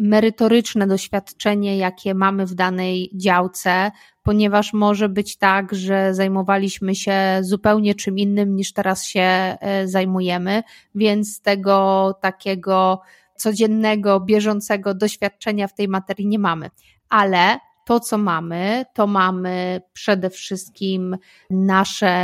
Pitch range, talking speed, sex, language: 185-215 Hz, 110 wpm, female, Polish